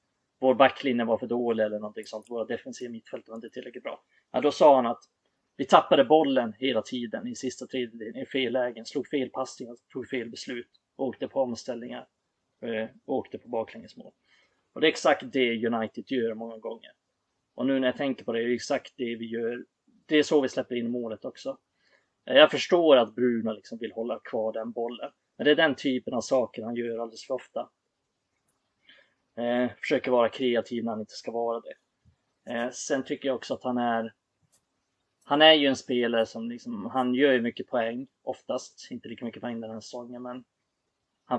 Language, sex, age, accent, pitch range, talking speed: Swedish, male, 30-49, native, 115-130 Hz, 195 wpm